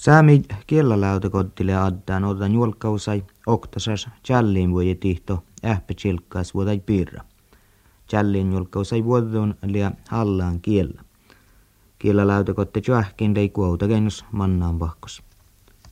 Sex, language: male, Finnish